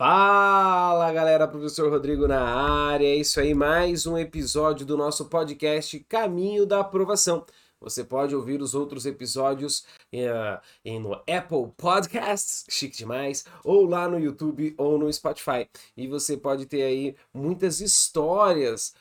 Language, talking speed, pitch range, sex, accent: Portuguese, 135 wpm, 145-200 Hz, male, Brazilian